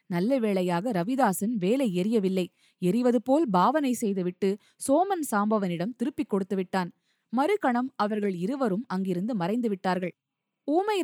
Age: 20-39